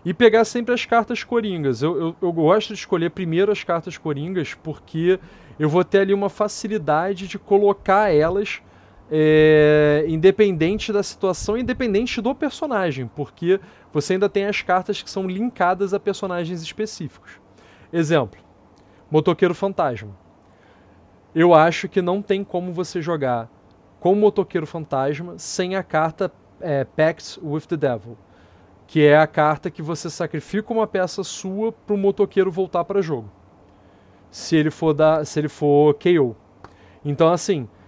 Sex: male